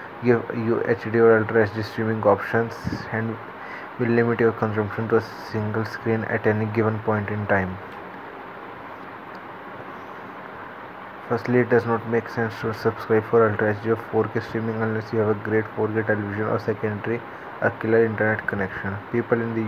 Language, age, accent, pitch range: English, 20-39, Indian, 110-115 Hz